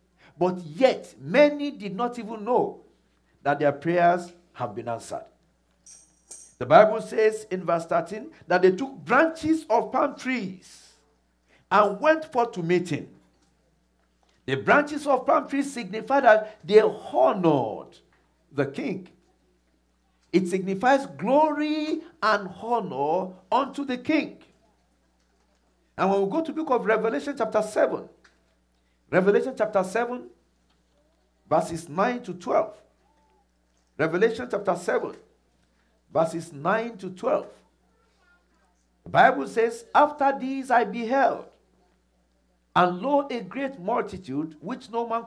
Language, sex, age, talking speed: English, male, 50-69, 120 wpm